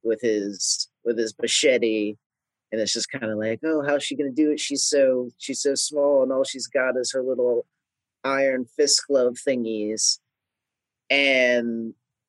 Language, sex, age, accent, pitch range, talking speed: English, male, 30-49, American, 120-155 Hz, 165 wpm